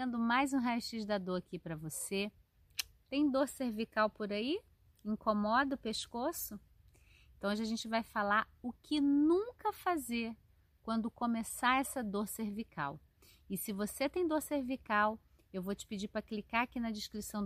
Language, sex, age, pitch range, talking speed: Portuguese, female, 30-49, 195-255 Hz, 160 wpm